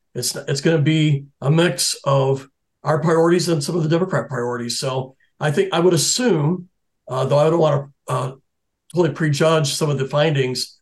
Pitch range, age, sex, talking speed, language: 135-165 Hz, 50-69, male, 195 wpm, English